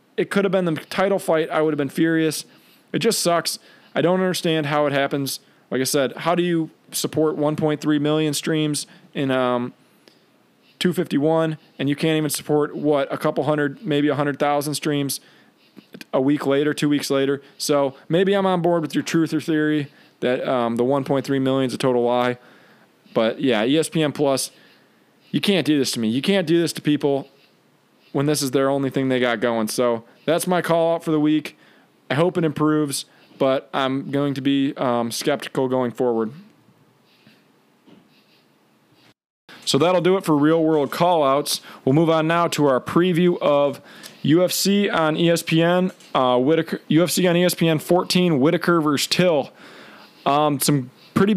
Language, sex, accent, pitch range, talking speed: English, male, American, 140-170 Hz, 175 wpm